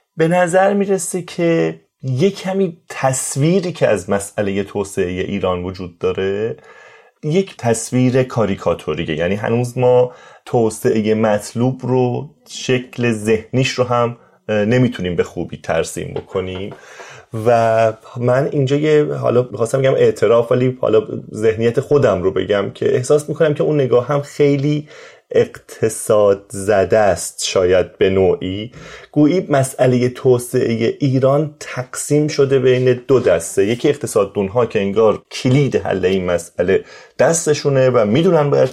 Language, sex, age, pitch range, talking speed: Persian, male, 30-49, 115-155 Hz, 125 wpm